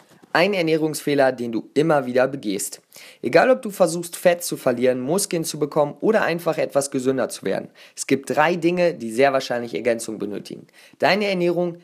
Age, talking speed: 30-49, 170 wpm